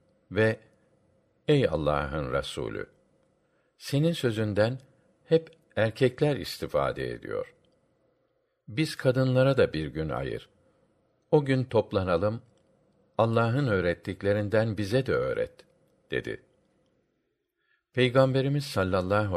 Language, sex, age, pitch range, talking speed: Turkish, male, 60-79, 105-155 Hz, 85 wpm